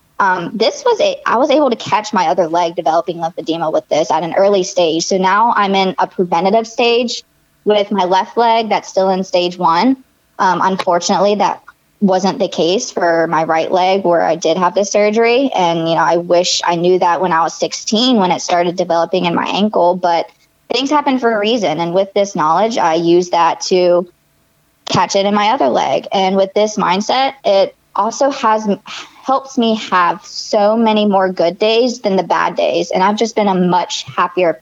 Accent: American